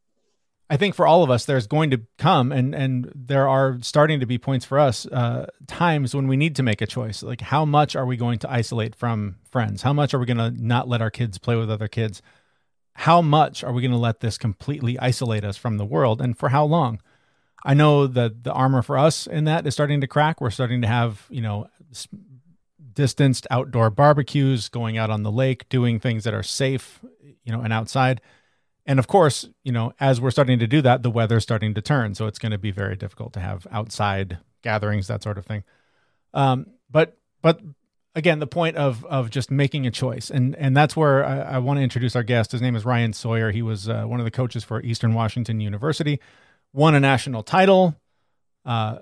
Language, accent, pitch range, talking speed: English, American, 115-145 Hz, 225 wpm